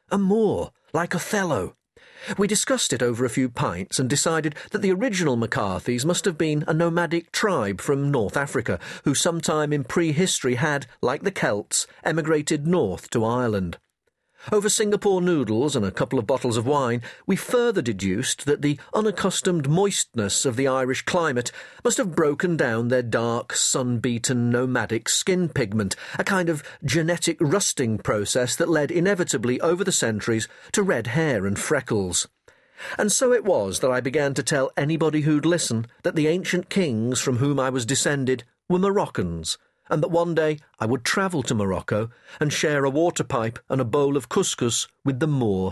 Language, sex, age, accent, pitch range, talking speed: English, male, 40-59, British, 120-170 Hz, 170 wpm